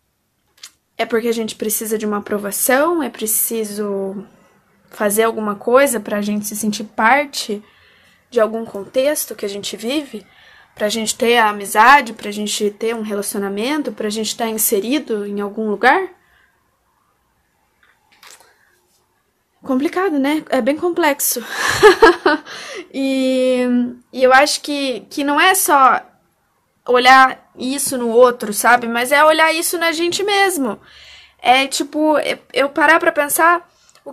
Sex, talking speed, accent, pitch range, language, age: female, 140 wpm, Brazilian, 230-310 Hz, Portuguese, 10-29